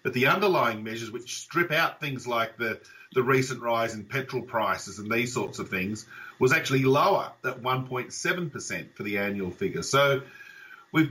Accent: Australian